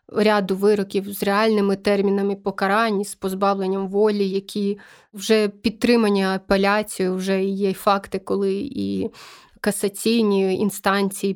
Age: 20-39